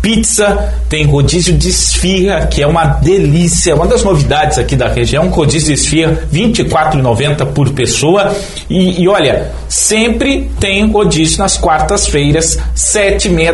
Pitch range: 135-180 Hz